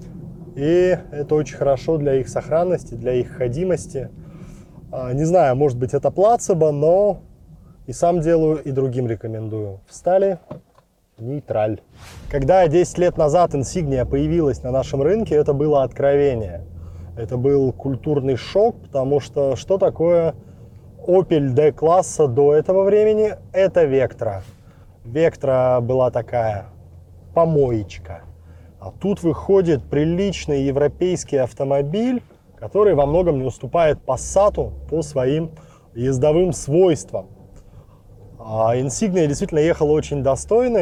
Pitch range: 120-165 Hz